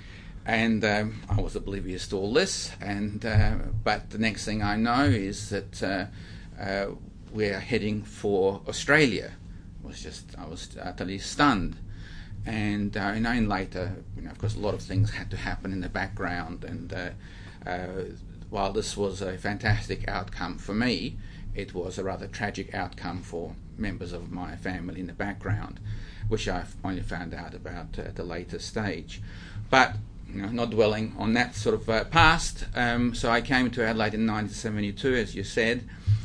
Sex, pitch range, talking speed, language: male, 95-110 Hz, 180 wpm, English